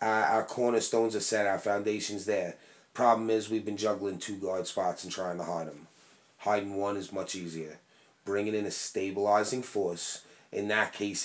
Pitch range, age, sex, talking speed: 100-120 Hz, 30-49, male, 180 wpm